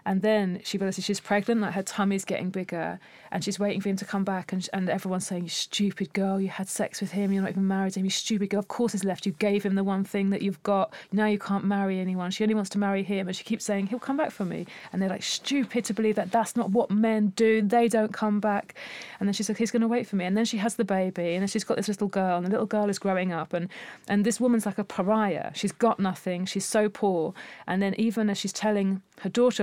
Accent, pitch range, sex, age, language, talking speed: British, 185-210 Hz, female, 30-49, English, 285 wpm